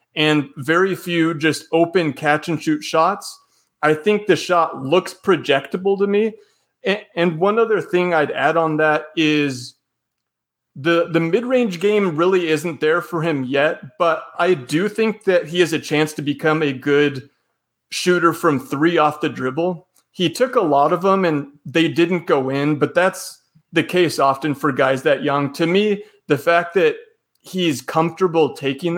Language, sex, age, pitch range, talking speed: English, male, 30-49, 150-180 Hz, 170 wpm